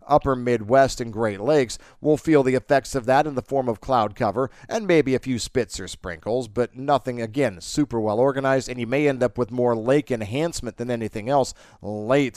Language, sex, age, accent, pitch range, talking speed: English, male, 50-69, American, 115-145 Hz, 210 wpm